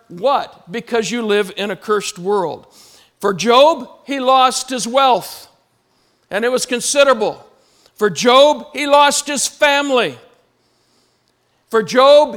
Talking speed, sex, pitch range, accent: 125 wpm, male, 230-290 Hz, American